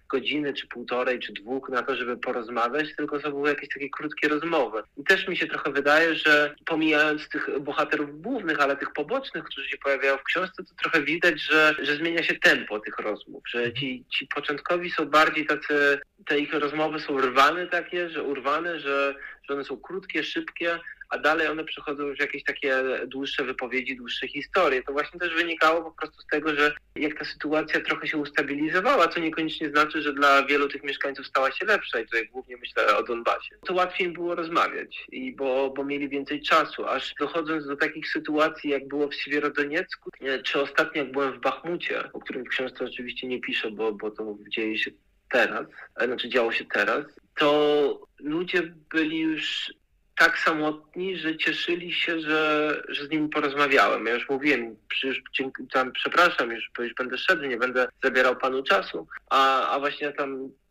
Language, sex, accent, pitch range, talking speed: Polish, male, native, 135-160 Hz, 185 wpm